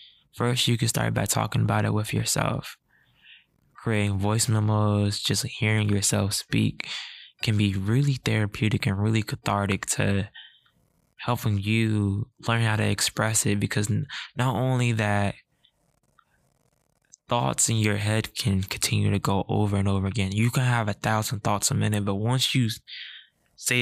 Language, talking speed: English, 150 wpm